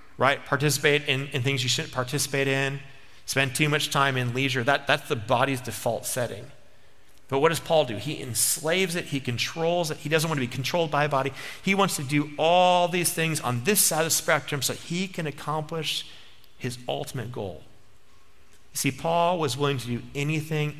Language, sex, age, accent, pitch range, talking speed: English, male, 40-59, American, 115-150 Hz, 200 wpm